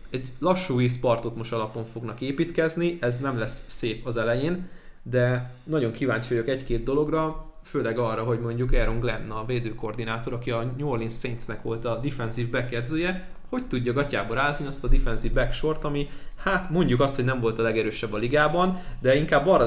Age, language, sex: 20-39, Hungarian, male